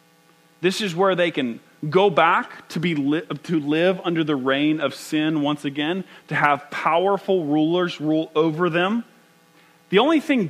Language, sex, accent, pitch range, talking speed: English, male, American, 150-165 Hz, 165 wpm